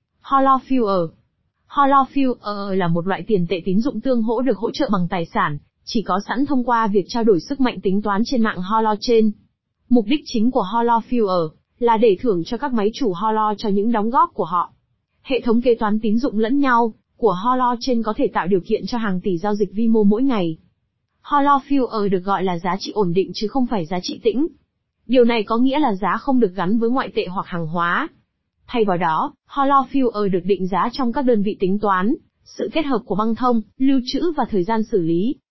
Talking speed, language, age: 220 wpm, Vietnamese, 20-39